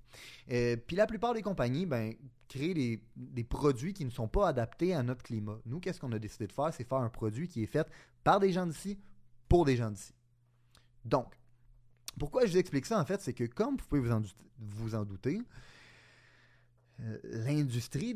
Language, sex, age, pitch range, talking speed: French, male, 30-49, 120-150 Hz, 200 wpm